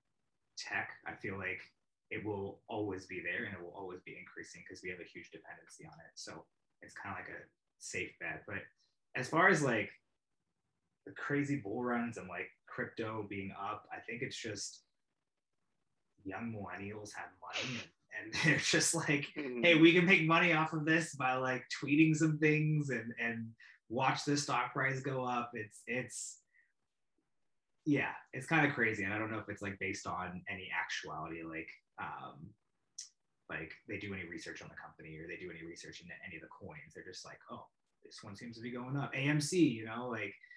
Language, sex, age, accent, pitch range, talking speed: English, male, 20-39, American, 100-145 Hz, 195 wpm